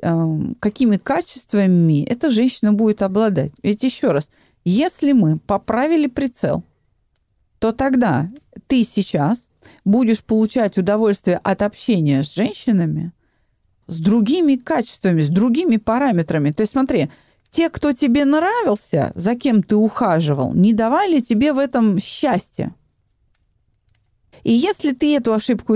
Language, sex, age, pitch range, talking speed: Russian, female, 30-49, 195-265 Hz, 120 wpm